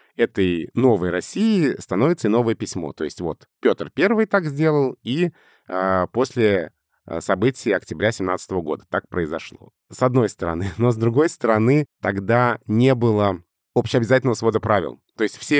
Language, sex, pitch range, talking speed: Russian, male, 95-125 Hz, 150 wpm